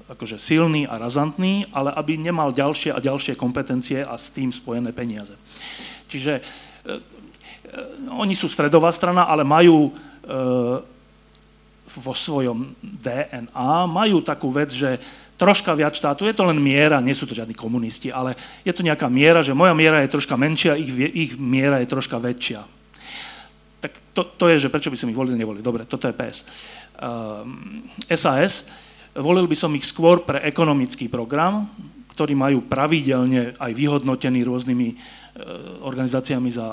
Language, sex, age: Slovak, male, 40-59